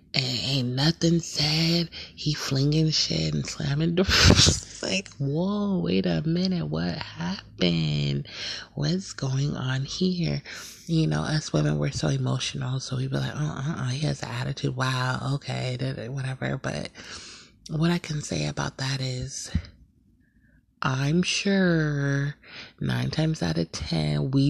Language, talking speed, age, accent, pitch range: English, 135 wpm, 30-49, American, 125-145 Hz